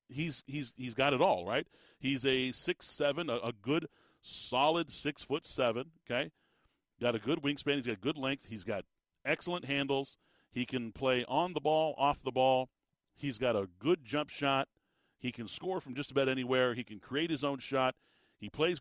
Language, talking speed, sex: English, 195 wpm, male